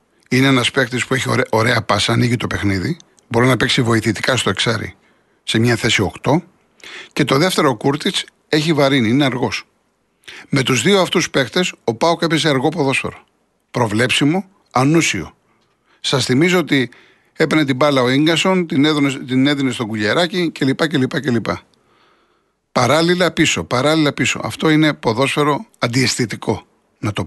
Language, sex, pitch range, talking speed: Greek, male, 125-165 Hz, 150 wpm